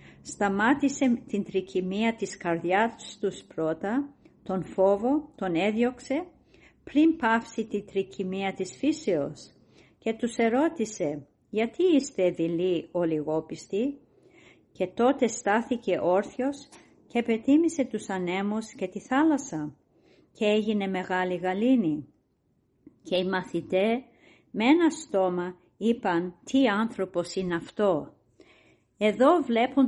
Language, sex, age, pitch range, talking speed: Greek, female, 50-69, 185-250 Hz, 105 wpm